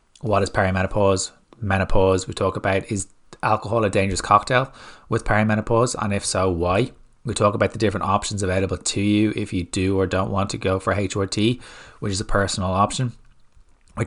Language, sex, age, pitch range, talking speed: English, male, 20-39, 95-110 Hz, 185 wpm